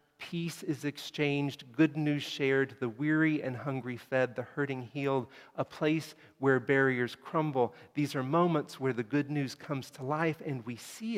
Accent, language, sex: American, English, male